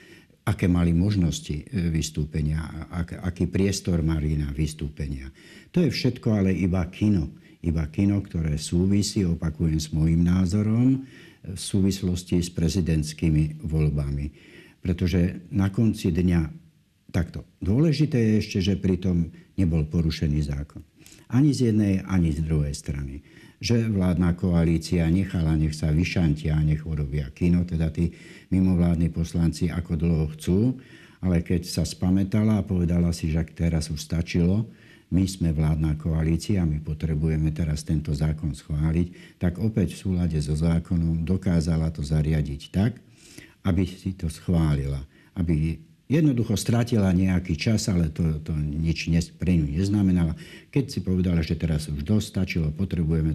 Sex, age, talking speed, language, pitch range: male, 60-79, 135 wpm, Slovak, 80-95 Hz